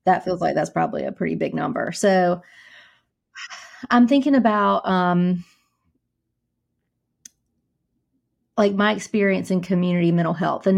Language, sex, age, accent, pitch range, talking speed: English, female, 30-49, American, 175-200 Hz, 120 wpm